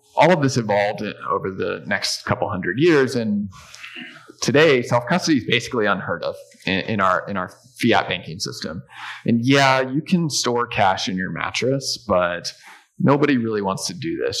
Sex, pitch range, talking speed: male, 105-130 Hz, 170 wpm